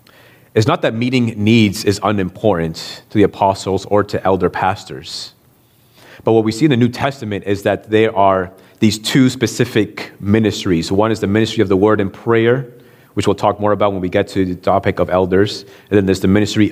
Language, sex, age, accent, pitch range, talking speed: English, male, 30-49, American, 100-125 Hz, 205 wpm